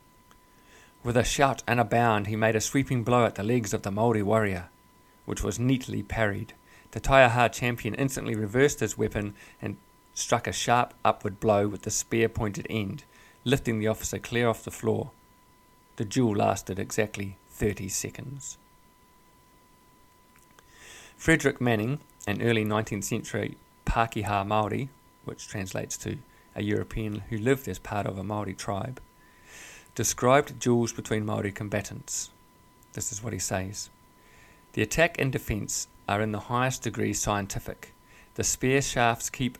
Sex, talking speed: male, 145 wpm